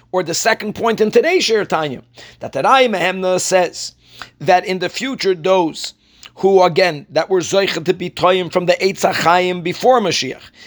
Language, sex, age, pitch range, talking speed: English, male, 50-69, 185-235 Hz, 165 wpm